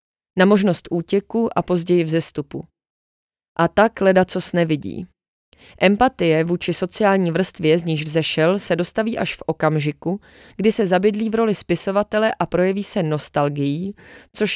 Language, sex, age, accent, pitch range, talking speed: Czech, female, 30-49, native, 170-200 Hz, 145 wpm